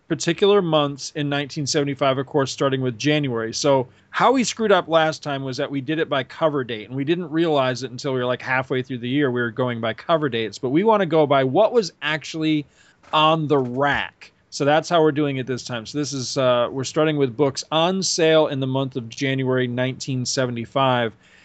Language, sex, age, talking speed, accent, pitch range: English, male, 40-59, 220 wpm, American, 125-155 Hz